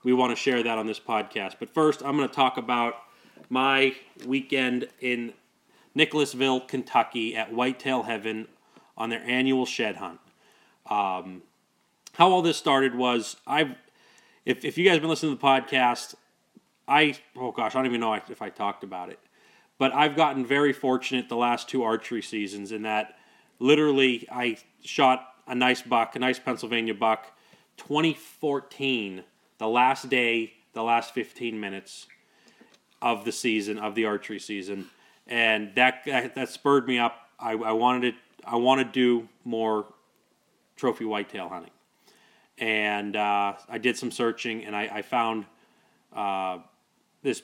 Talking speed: 155 wpm